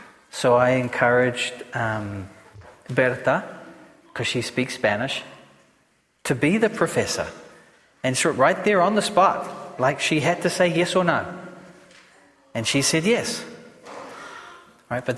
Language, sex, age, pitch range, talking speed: English, male, 40-59, 135-180 Hz, 135 wpm